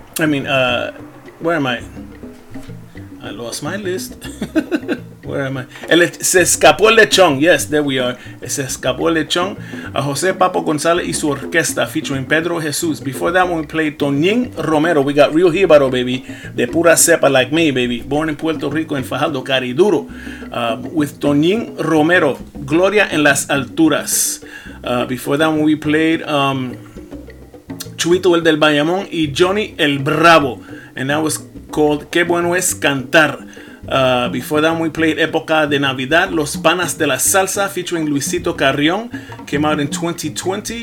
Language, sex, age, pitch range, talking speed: English, male, 30-49, 140-170 Hz, 155 wpm